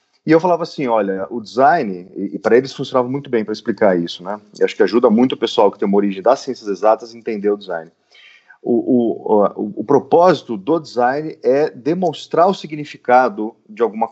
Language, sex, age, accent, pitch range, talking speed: Portuguese, male, 30-49, Brazilian, 100-130 Hz, 200 wpm